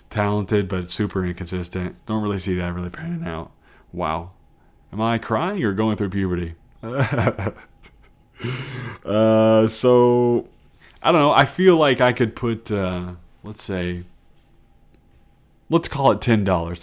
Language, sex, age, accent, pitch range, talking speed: English, male, 30-49, American, 95-125 Hz, 130 wpm